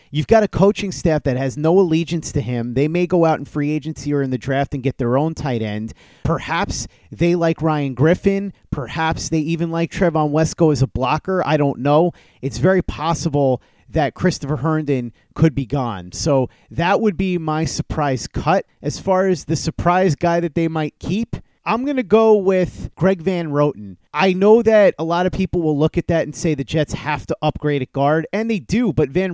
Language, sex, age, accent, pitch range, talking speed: English, male, 30-49, American, 140-180 Hz, 215 wpm